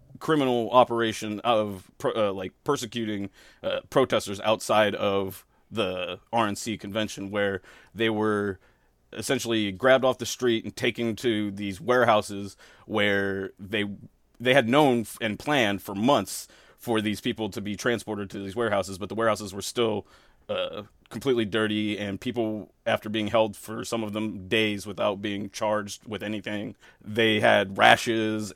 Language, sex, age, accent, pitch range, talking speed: English, male, 30-49, American, 100-115 Hz, 145 wpm